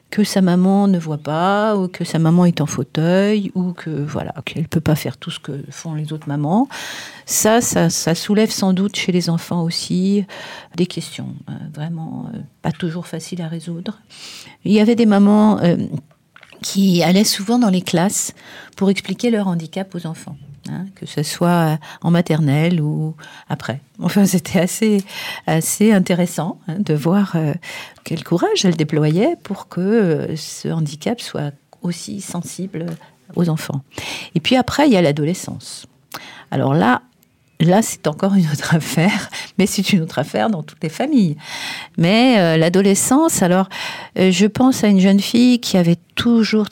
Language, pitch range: French, 160-200 Hz